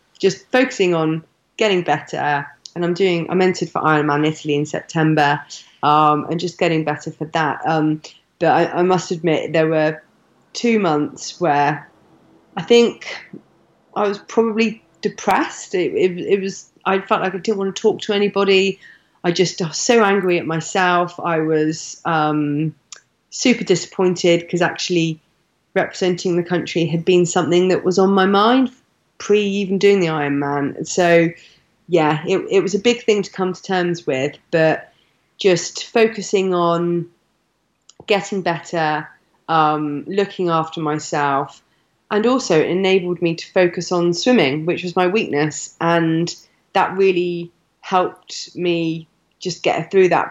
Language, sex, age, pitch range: English, female, 30-49, 155-190 Hz